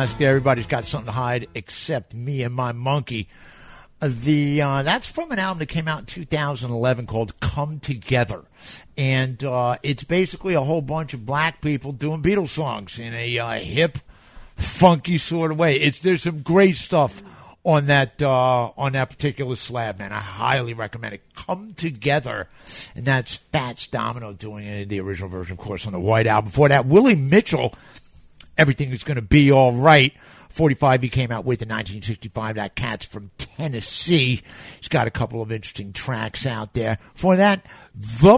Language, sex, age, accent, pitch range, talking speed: English, male, 50-69, American, 115-150 Hz, 180 wpm